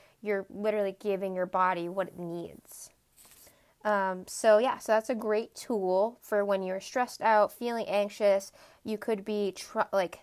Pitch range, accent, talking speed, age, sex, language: 190-220 Hz, American, 160 wpm, 20-39, female, English